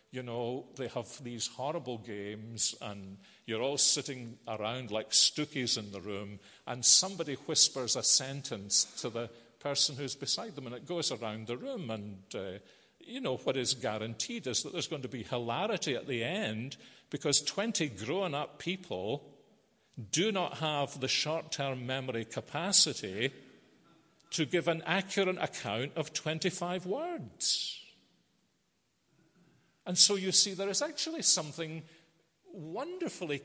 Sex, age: male, 50-69